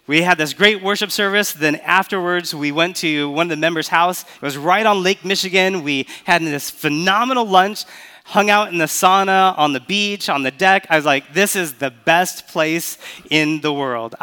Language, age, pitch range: English, 30-49, 145-185 Hz